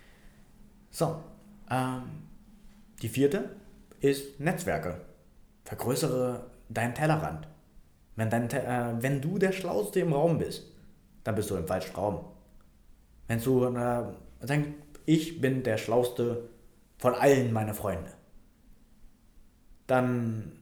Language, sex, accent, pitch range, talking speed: German, male, German, 110-145 Hz, 105 wpm